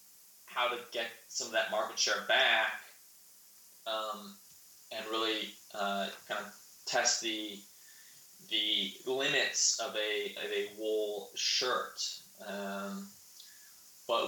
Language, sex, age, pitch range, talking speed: English, male, 20-39, 105-120 Hz, 115 wpm